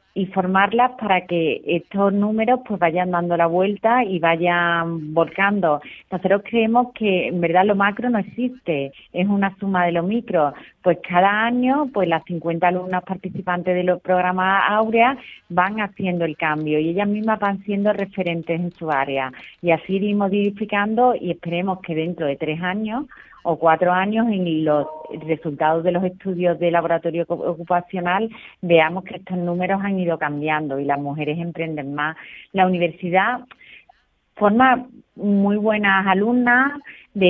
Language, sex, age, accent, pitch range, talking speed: Spanish, female, 30-49, Spanish, 170-205 Hz, 155 wpm